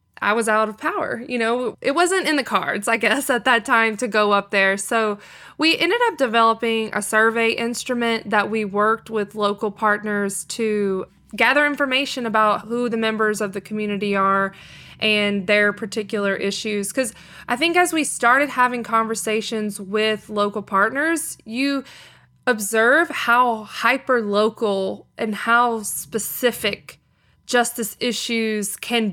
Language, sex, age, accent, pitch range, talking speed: English, female, 20-39, American, 215-260 Hz, 150 wpm